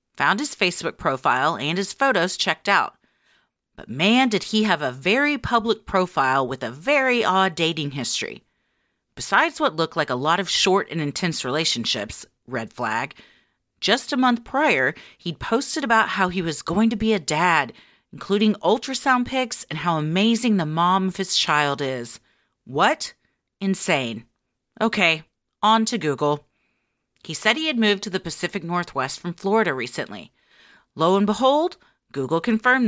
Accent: American